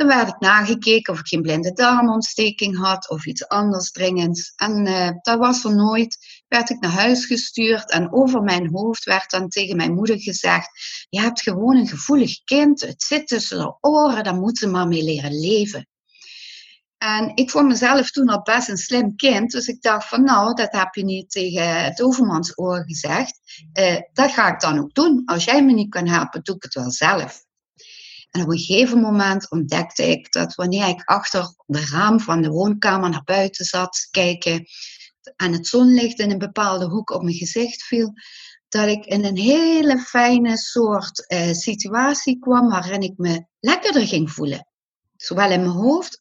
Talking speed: 190 wpm